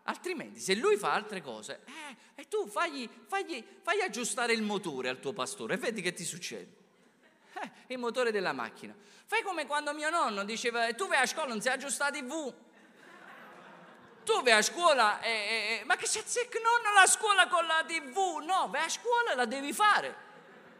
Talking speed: 190 wpm